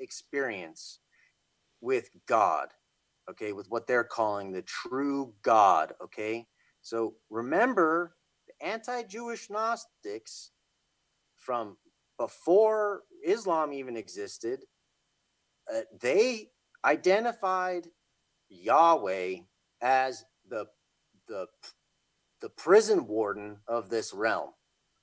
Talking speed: 85 wpm